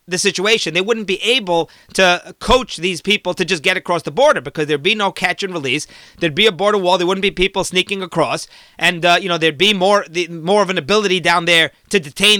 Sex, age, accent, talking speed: male, 30-49, American, 240 wpm